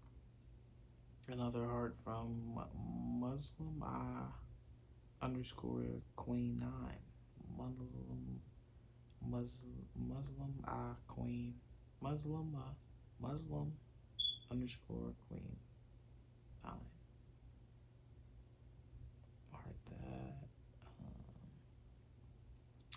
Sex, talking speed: male, 50 wpm